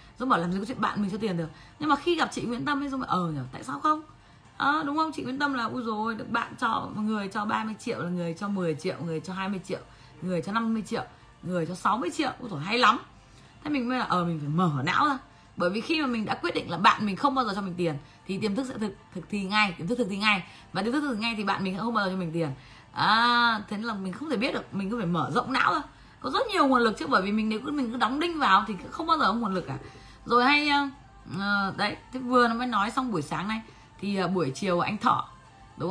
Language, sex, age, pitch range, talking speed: Vietnamese, female, 20-39, 175-250 Hz, 295 wpm